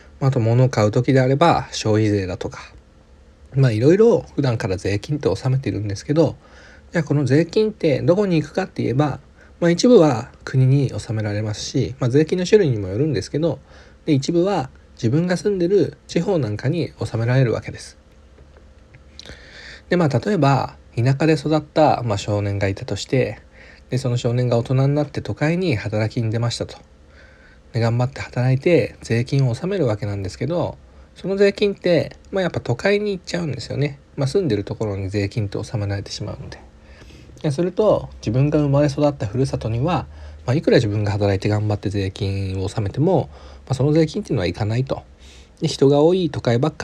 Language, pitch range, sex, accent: Japanese, 100-150 Hz, male, native